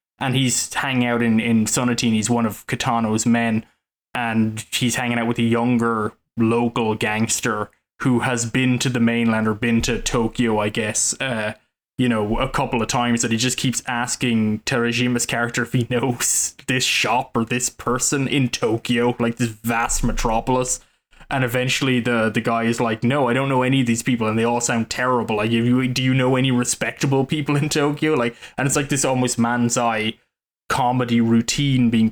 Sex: male